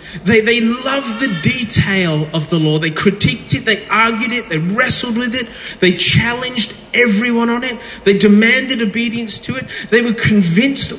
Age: 30-49